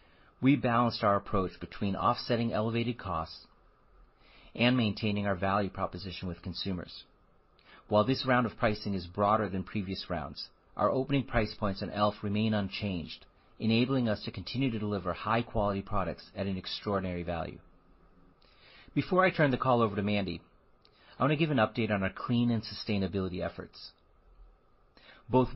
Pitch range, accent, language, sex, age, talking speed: 95-120 Hz, American, English, male, 40-59, 155 wpm